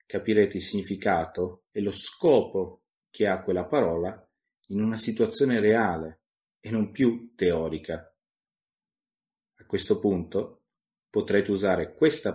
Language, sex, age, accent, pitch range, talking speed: Italian, male, 30-49, native, 90-120 Hz, 115 wpm